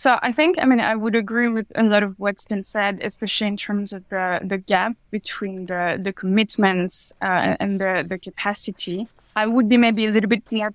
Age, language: 20-39, English